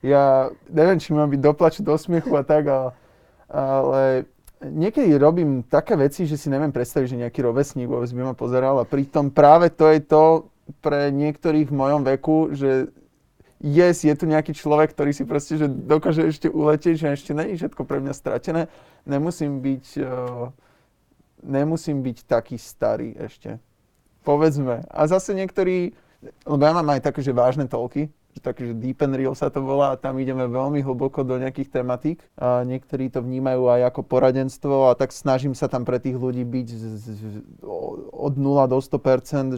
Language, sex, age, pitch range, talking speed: Slovak, male, 20-39, 130-155 Hz, 170 wpm